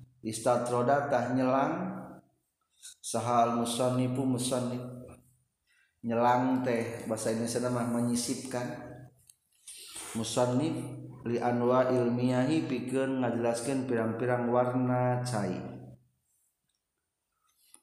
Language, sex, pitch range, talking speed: Indonesian, male, 115-130 Hz, 65 wpm